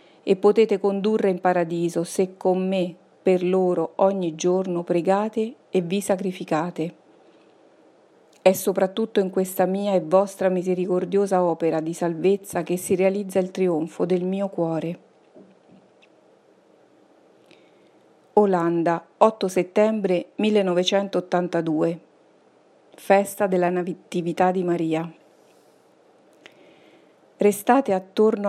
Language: Italian